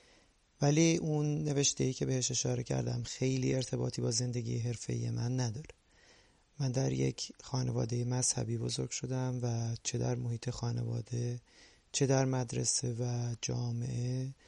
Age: 30-49